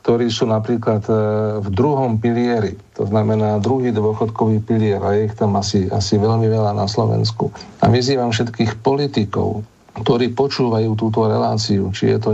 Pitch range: 105-120 Hz